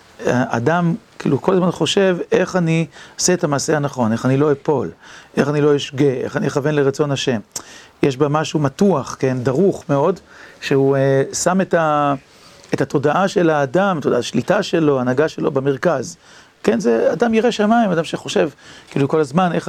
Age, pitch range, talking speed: 40-59, 135-170 Hz, 175 wpm